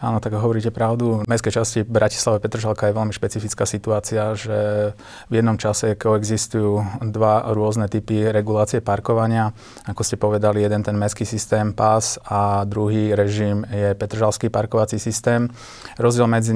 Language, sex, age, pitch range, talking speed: Slovak, male, 20-39, 105-110 Hz, 145 wpm